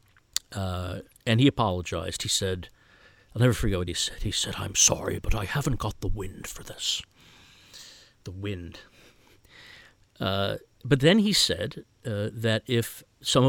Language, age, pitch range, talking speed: English, 50-69, 95-135 Hz, 155 wpm